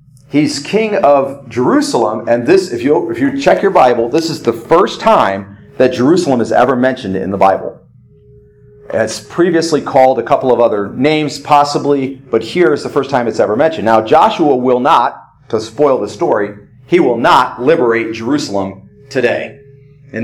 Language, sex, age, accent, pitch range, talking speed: English, male, 40-59, American, 120-145 Hz, 165 wpm